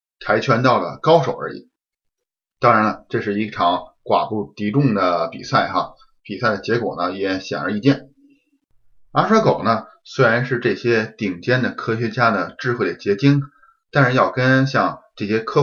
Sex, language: male, Chinese